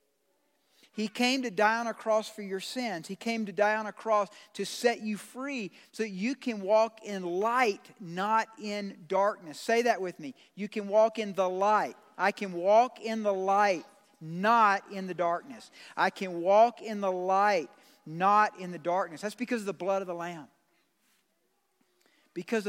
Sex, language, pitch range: male, English, 195-245 Hz